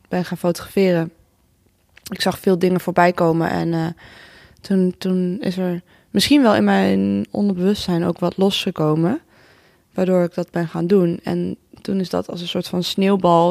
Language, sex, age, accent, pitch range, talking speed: Dutch, female, 20-39, Dutch, 175-195 Hz, 170 wpm